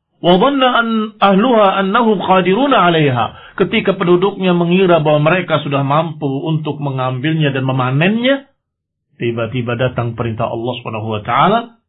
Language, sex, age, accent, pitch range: Indonesian, male, 50-69, native, 120-175 Hz